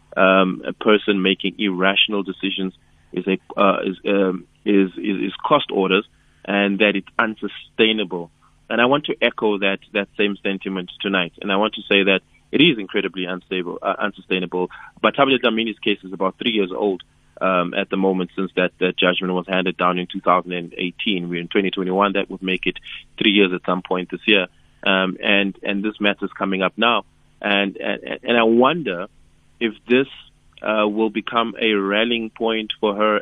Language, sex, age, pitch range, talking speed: English, male, 20-39, 95-110 Hz, 185 wpm